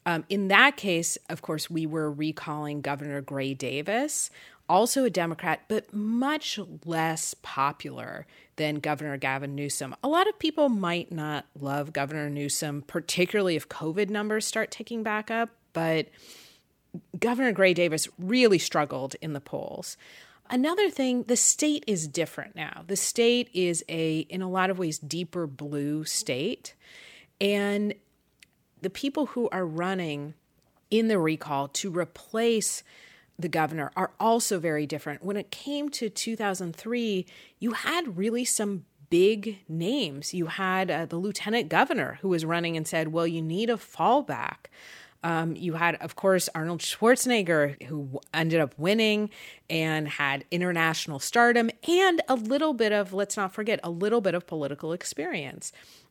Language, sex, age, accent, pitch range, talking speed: English, female, 30-49, American, 155-220 Hz, 150 wpm